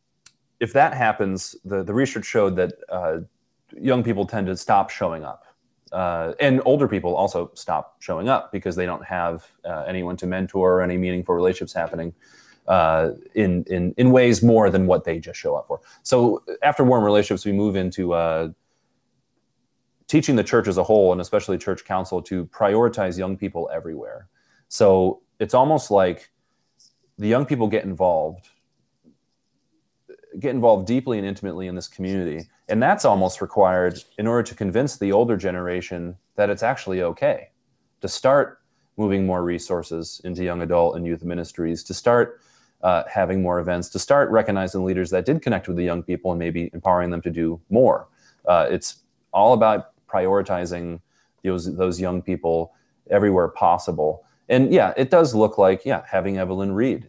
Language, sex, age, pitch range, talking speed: English, male, 30-49, 90-105 Hz, 170 wpm